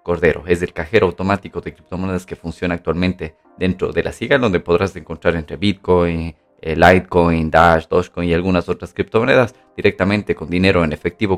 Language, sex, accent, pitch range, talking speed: Spanish, male, Mexican, 85-95 Hz, 165 wpm